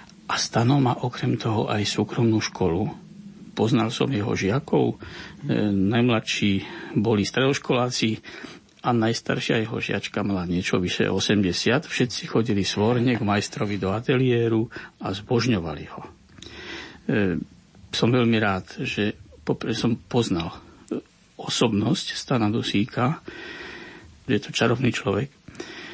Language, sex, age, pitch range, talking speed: Slovak, male, 50-69, 105-125 Hz, 115 wpm